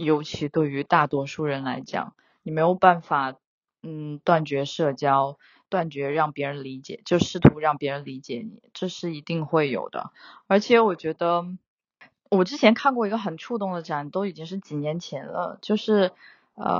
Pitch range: 160-210 Hz